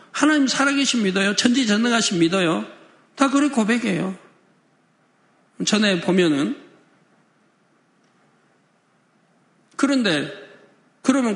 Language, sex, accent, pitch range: Korean, male, native, 185-260 Hz